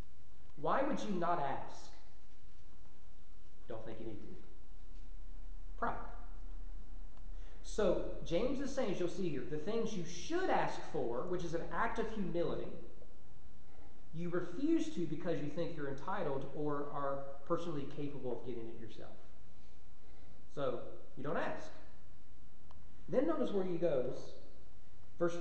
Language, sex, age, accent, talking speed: English, male, 30-49, American, 135 wpm